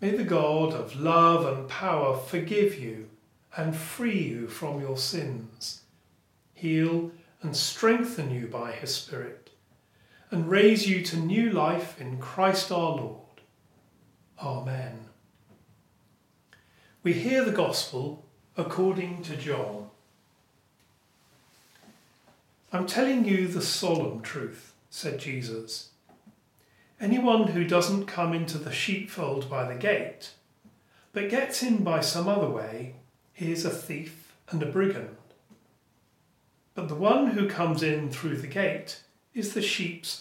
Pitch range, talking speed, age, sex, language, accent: 135-185 Hz, 125 wpm, 40-59, male, English, British